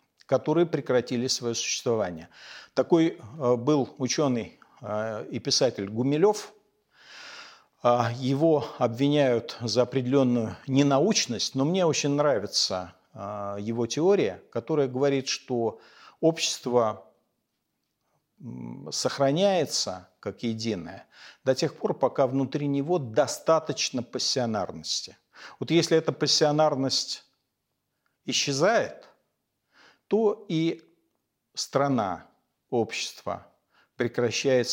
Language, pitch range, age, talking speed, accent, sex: Russian, 115-150 Hz, 50-69, 80 wpm, native, male